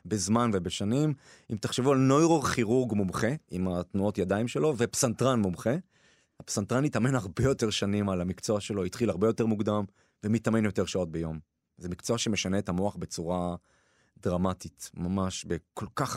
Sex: male